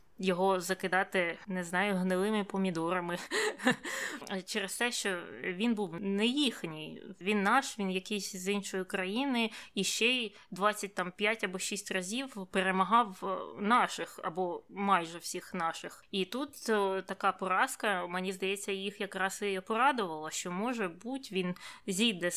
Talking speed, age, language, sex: 135 wpm, 20-39, Ukrainian, female